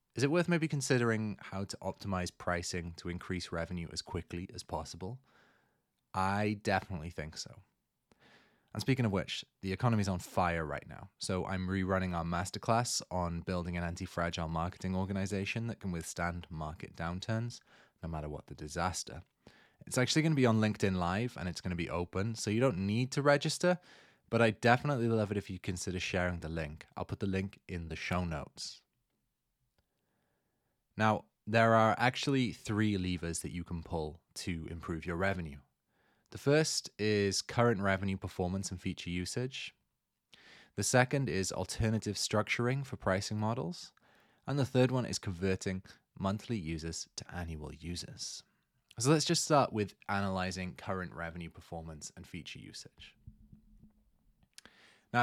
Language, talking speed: English, 160 wpm